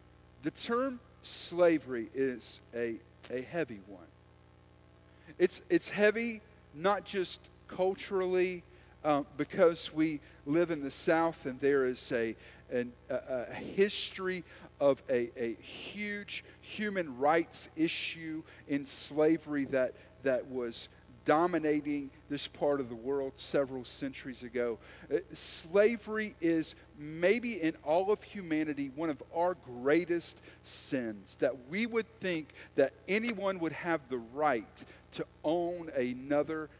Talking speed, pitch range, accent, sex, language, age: 120 wpm, 125-185 Hz, American, male, English, 50-69